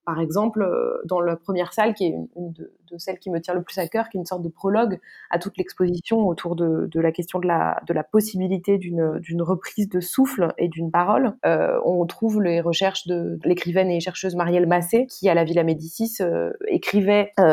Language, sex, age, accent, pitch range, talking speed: French, female, 20-39, French, 170-210 Hz, 225 wpm